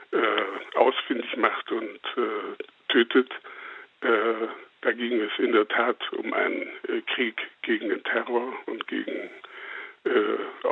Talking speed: 125 wpm